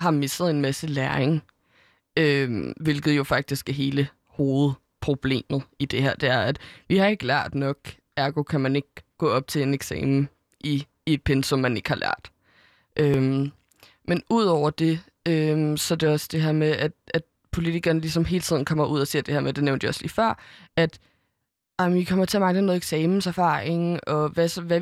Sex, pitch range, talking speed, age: female, 145-165 Hz, 200 wpm, 20-39